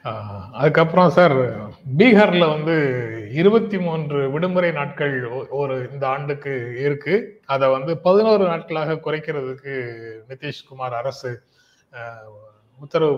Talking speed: 85 wpm